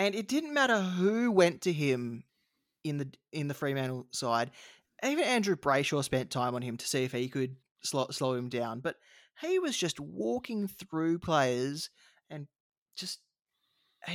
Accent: Australian